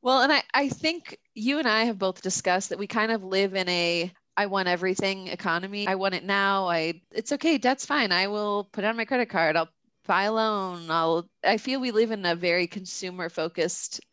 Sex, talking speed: female, 225 wpm